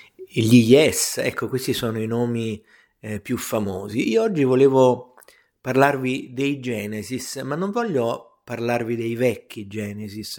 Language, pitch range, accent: Italian, 110-145 Hz, native